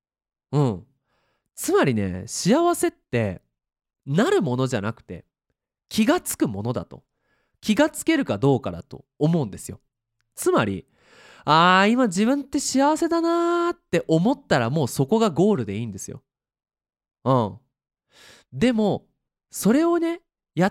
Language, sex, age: Japanese, male, 20-39